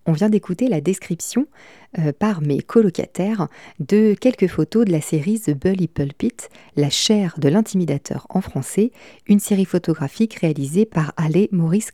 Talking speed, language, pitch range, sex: 155 wpm, French, 160-210 Hz, female